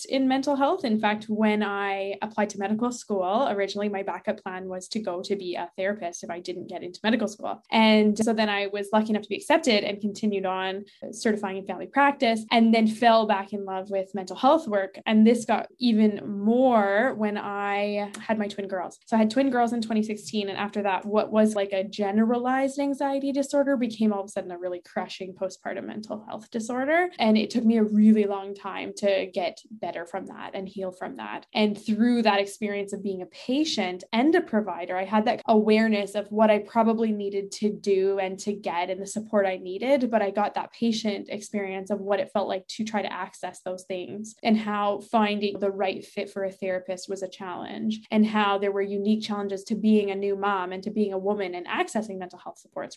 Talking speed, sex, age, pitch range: 220 wpm, female, 10-29, 195-220 Hz